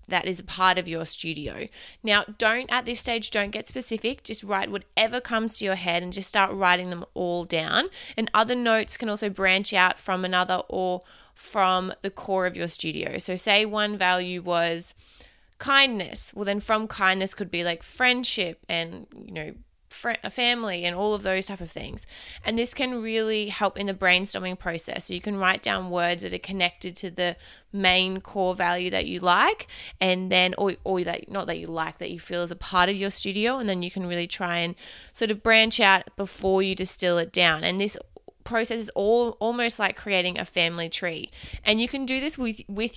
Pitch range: 180-225 Hz